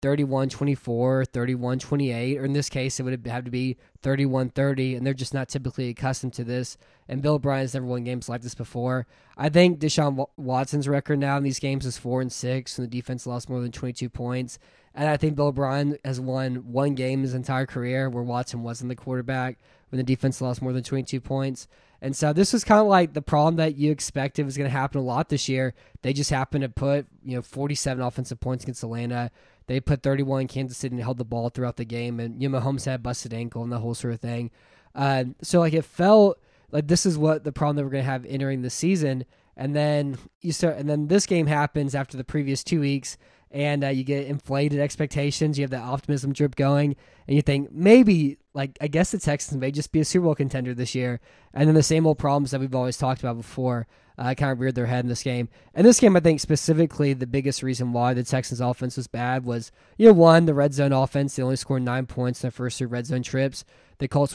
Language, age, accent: English, 10-29, American